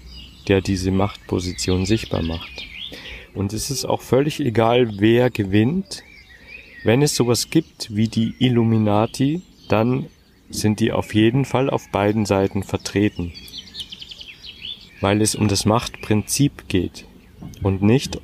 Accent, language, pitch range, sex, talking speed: German, German, 95-120 Hz, male, 125 wpm